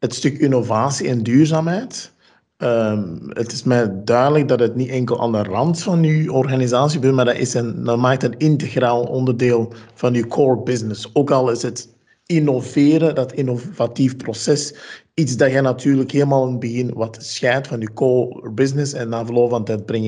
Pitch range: 120-155 Hz